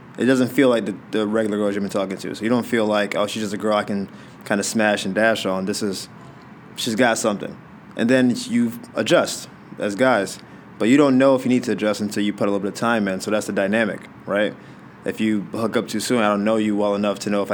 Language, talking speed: English, 270 wpm